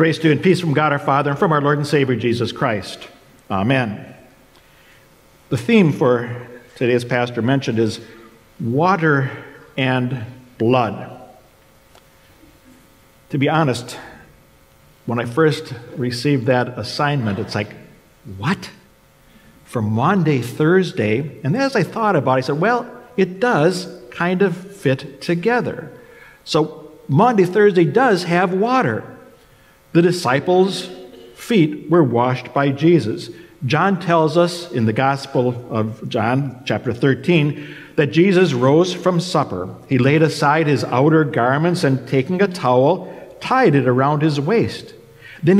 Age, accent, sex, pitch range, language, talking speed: 50-69, American, male, 125-175 Hz, English, 135 wpm